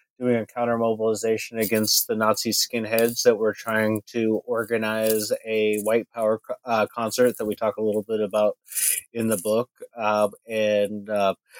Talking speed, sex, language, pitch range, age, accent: 160 wpm, male, English, 105-120 Hz, 30-49, American